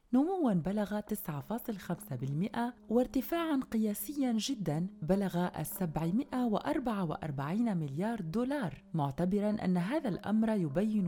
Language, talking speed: Arabic, 80 wpm